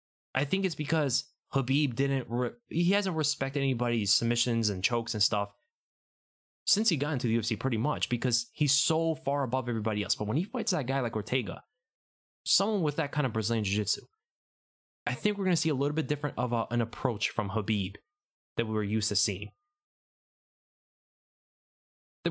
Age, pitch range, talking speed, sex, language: 20-39, 110-150 Hz, 190 wpm, male, English